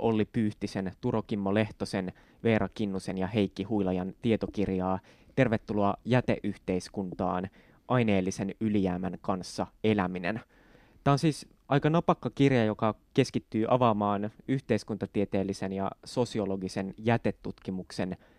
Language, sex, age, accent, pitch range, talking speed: Finnish, male, 20-39, native, 100-120 Hz, 100 wpm